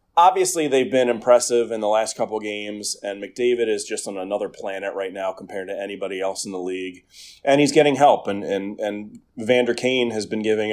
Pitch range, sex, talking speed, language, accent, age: 105-125 Hz, male, 215 wpm, English, American, 30-49